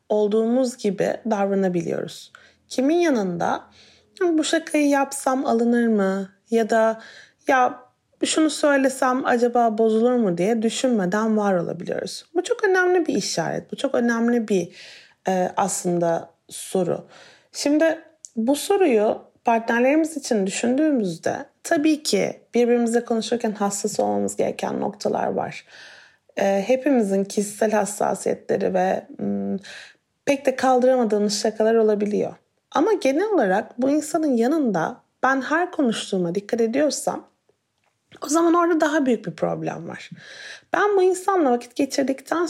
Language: Turkish